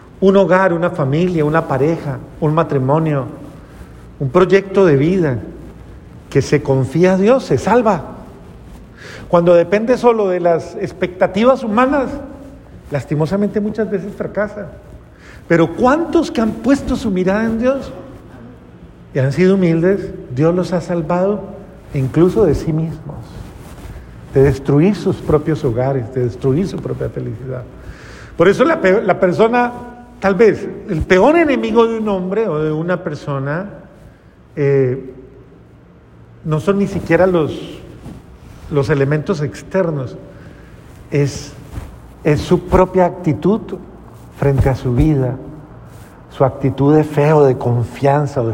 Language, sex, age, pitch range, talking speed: Spanish, male, 50-69, 140-195 Hz, 130 wpm